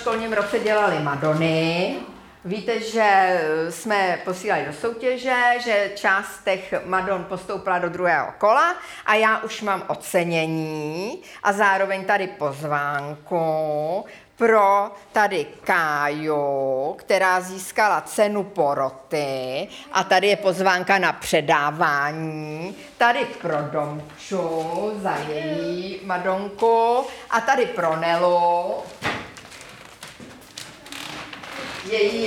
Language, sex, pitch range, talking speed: English, female, 180-235 Hz, 95 wpm